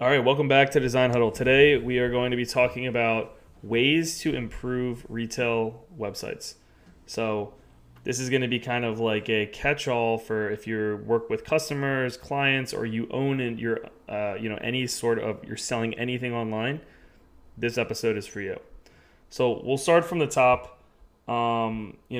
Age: 20-39